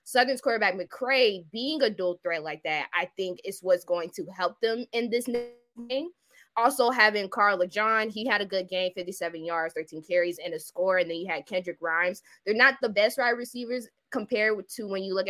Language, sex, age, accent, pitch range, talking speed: English, female, 20-39, American, 180-235 Hz, 215 wpm